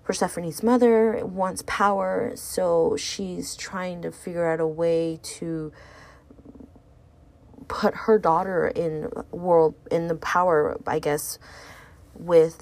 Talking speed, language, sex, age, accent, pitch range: 115 wpm, English, female, 20-39, American, 165-200 Hz